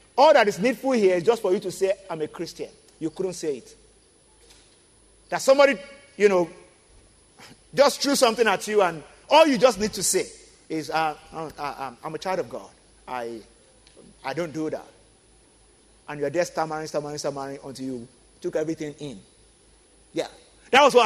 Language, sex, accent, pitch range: English, male, Nigerian, 165-275 Hz